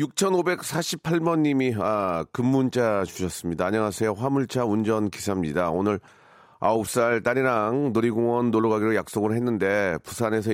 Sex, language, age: male, Korean, 40-59